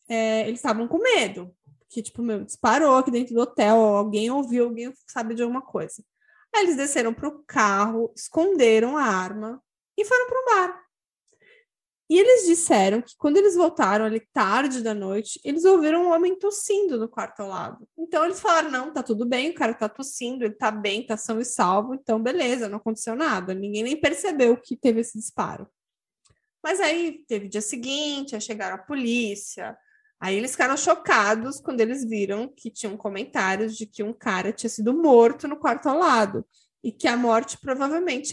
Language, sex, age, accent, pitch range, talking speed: Portuguese, female, 20-39, Brazilian, 220-325 Hz, 185 wpm